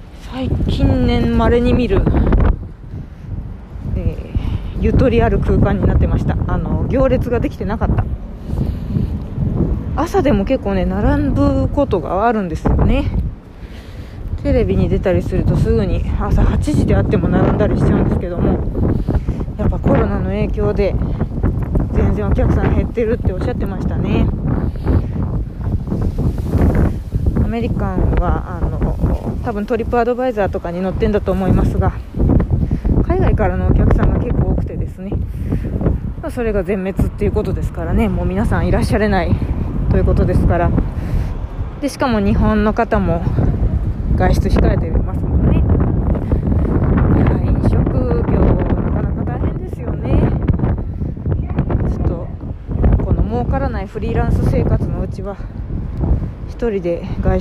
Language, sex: Japanese, female